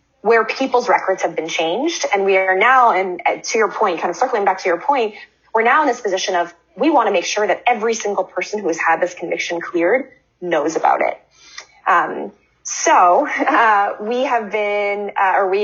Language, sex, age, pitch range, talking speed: English, female, 20-39, 180-250 Hz, 200 wpm